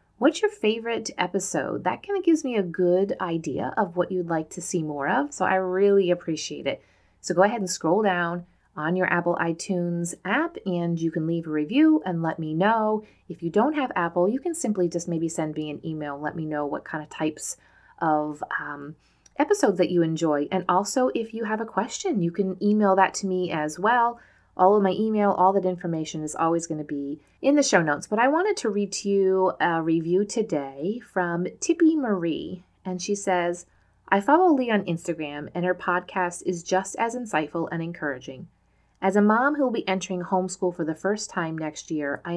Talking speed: 210 wpm